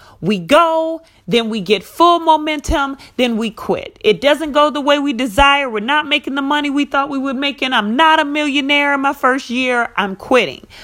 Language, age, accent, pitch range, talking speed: English, 40-59, American, 225-295 Hz, 205 wpm